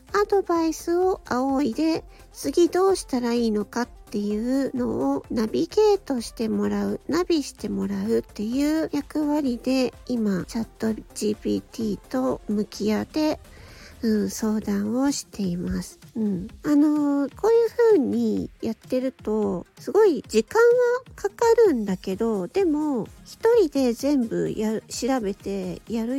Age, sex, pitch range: 50-69, female, 210-315 Hz